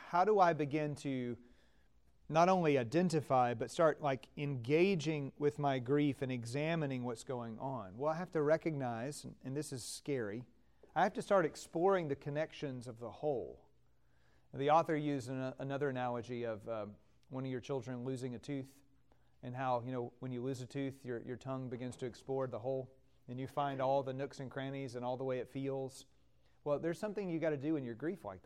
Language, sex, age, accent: English, male, 40-59, American